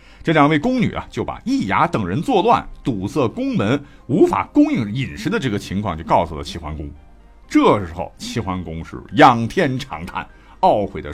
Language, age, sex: Chinese, 50-69, male